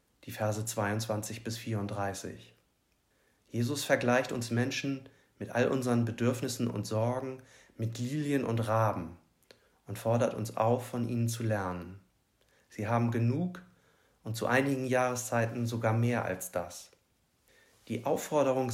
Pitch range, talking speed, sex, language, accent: 110-135 Hz, 130 wpm, male, German, German